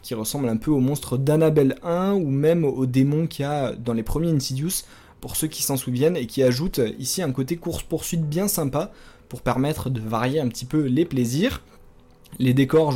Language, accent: French, French